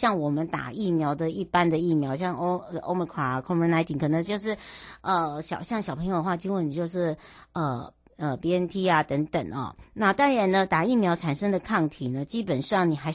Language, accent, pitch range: Chinese, American, 150-200 Hz